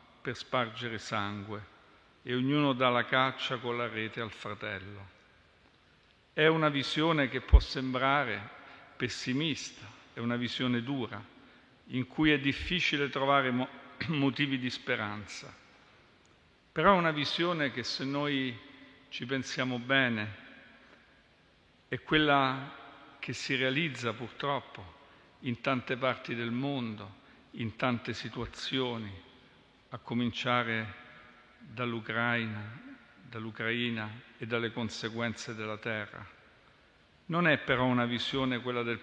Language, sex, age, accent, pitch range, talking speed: Italian, male, 50-69, native, 115-135 Hz, 110 wpm